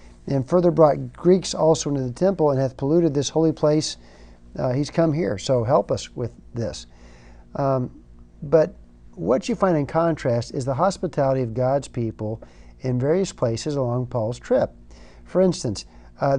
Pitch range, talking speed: 120-155 Hz, 165 wpm